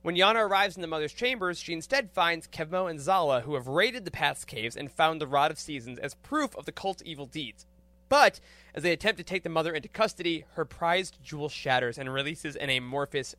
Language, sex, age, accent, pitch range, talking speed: English, male, 20-39, American, 140-175 Hz, 225 wpm